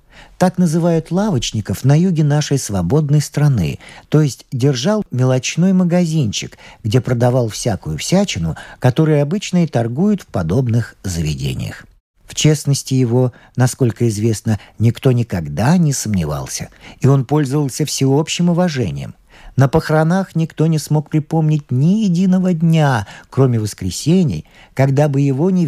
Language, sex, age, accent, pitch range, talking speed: Russian, male, 50-69, native, 120-175 Hz, 125 wpm